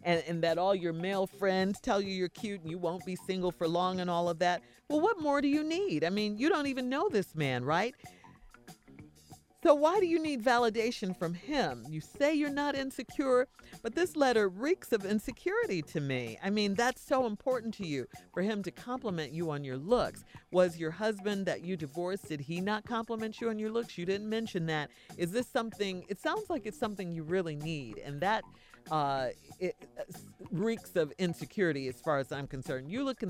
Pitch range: 155-240 Hz